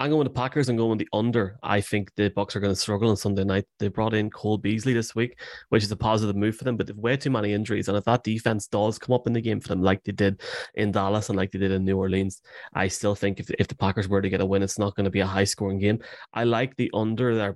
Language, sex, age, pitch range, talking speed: English, male, 20-39, 100-115 Hz, 310 wpm